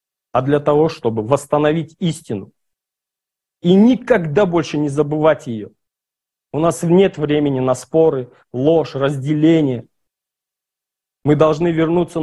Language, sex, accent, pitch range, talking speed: Russian, male, native, 145-190 Hz, 115 wpm